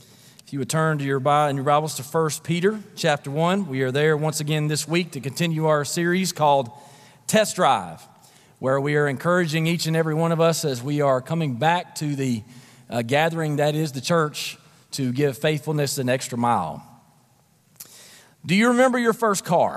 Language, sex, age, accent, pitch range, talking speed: English, male, 40-59, American, 150-195 Hz, 190 wpm